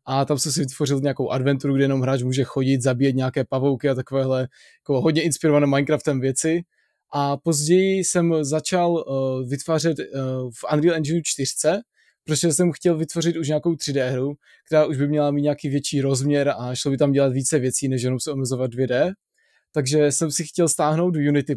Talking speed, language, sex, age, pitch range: 190 wpm, Czech, male, 20-39, 140-165 Hz